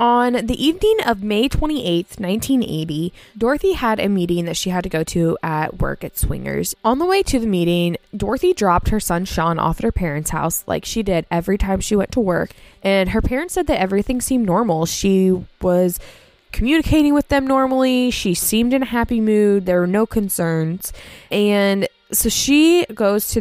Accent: American